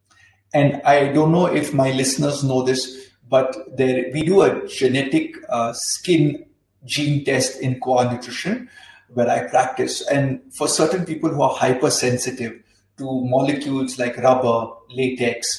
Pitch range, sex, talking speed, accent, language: 125-150 Hz, male, 140 wpm, native, Hindi